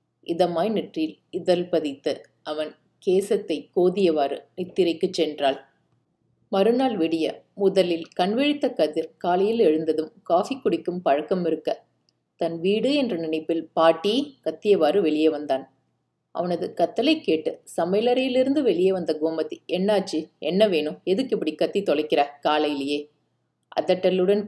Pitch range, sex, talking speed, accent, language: 155-195 Hz, female, 110 wpm, native, Tamil